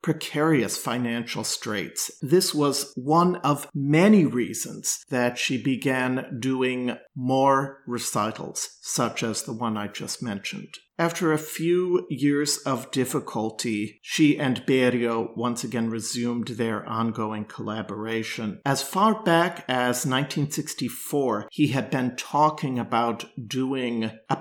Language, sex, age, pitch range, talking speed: English, male, 50-69, 115-145 Hz, 120 wpm